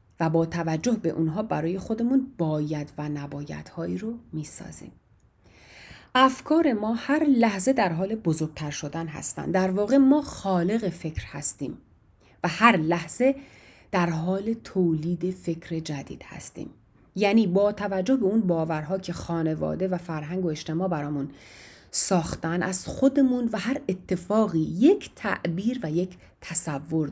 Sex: female